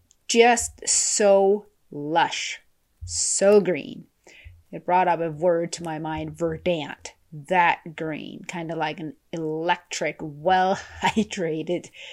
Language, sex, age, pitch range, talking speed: English, female, 30-49, 160-220 Hz, 115 wpm